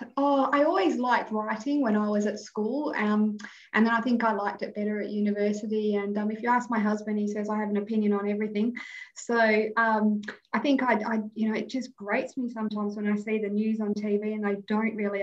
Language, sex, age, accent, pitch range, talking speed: English, female, 20-39, Australian, 200-215 Hz, 235 wpm